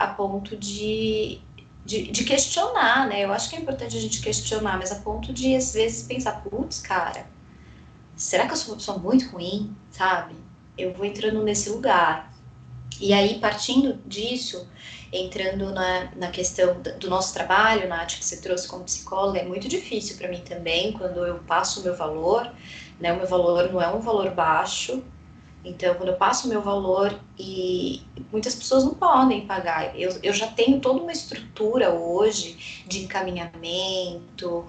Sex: female